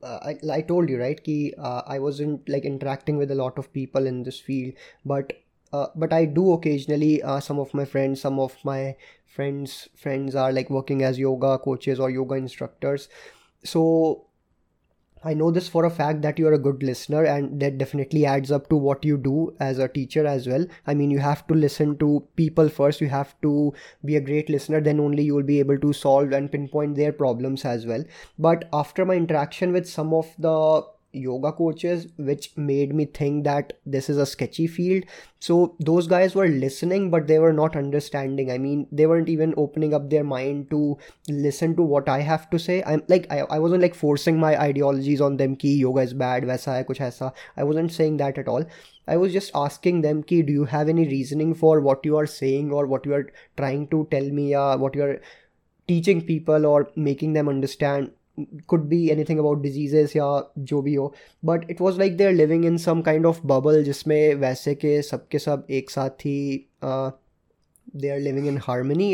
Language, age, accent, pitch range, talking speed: Hindi, 20-39, native, 140-160 Hz, 210 wpm